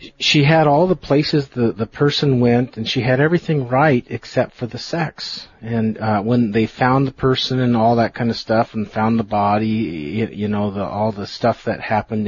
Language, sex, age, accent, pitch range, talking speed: English, male, 40-59, American, 110-135 Hz, 205 wpm